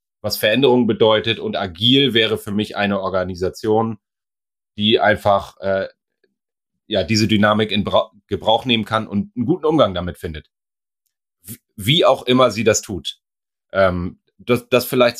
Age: 30-49